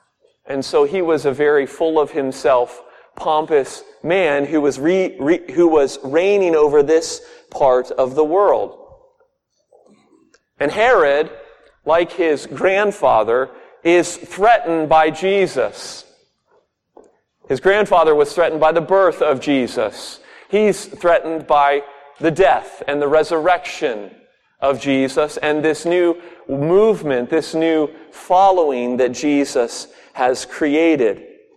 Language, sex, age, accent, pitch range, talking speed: English, male, 40-59, American, 145-190 Hz, 115 wpm